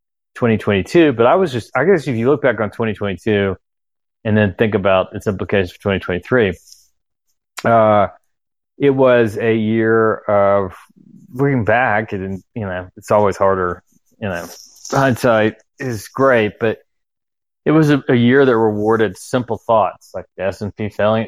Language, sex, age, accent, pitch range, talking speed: English, male, 30-49, American, 95-115 Hz, 150 wpm